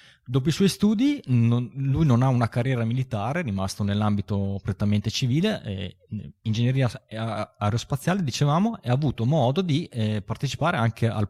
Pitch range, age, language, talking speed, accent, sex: 100-120 Hz, 20-39, Italian, 145 wpm, native, male